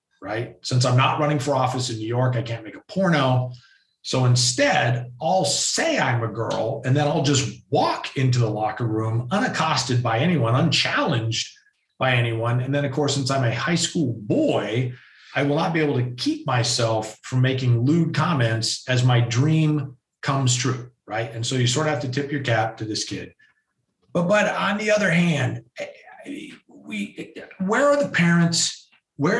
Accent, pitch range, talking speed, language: American, 125-155 Hz, 185 wpm, English